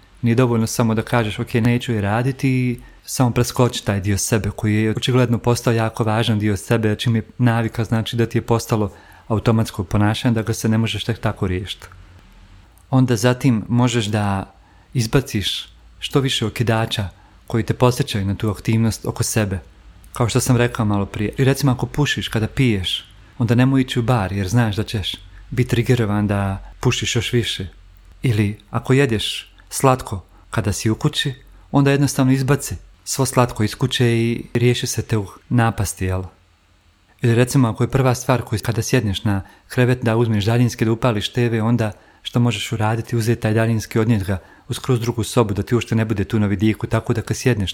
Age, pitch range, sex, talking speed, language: 40-59, 100-120 Hz, male, 180 wpm, Croatian